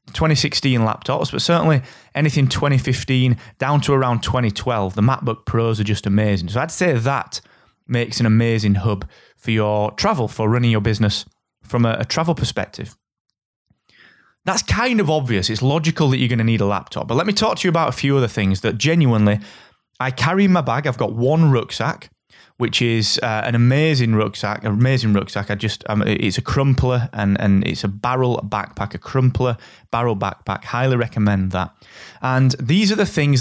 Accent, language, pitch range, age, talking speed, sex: British, English, 105-145 Hz, 20-39, 185 wpm, male